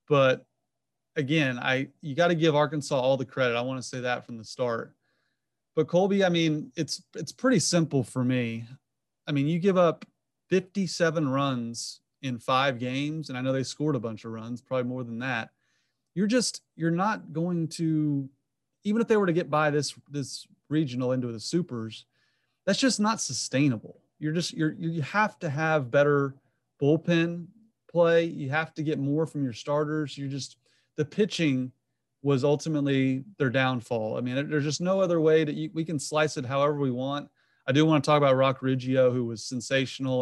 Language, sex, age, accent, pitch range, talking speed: English, male, 30-49, American, 125-160 Hz, 195 wpm